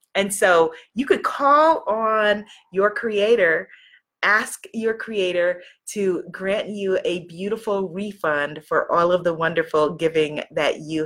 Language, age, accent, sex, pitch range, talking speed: English, 30-49, American, female, 175-235 Hz, 135 wpm